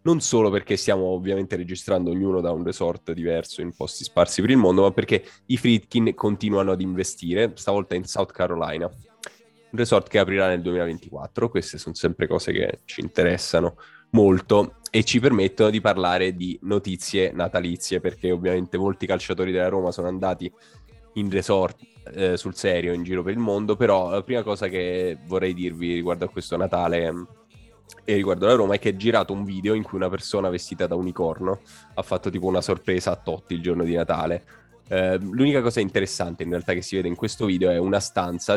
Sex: male